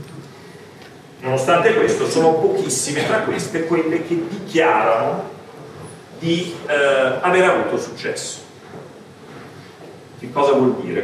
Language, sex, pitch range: Italian, male, 155-230 Hz